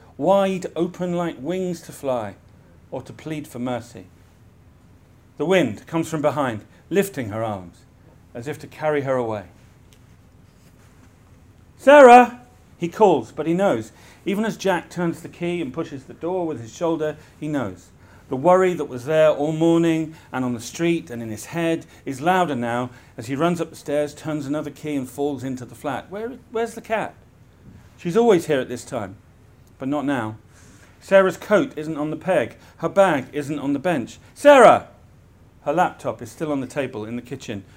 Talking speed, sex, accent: 180 wpm, male, British